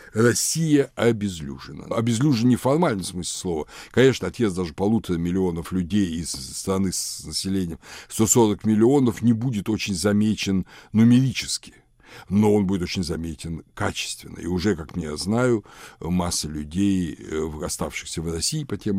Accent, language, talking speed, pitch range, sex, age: native, Russian, 135 wpm, 80-110 Hz, male, 60-79